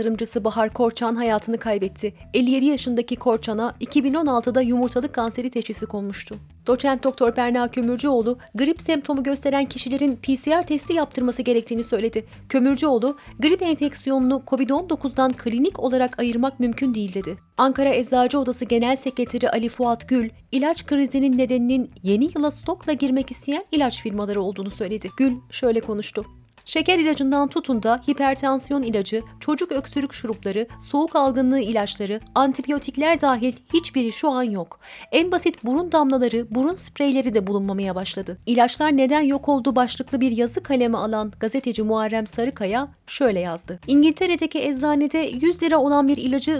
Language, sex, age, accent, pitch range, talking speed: Turkish, female, 30-49, native, 235-285 Hz, 140 wpm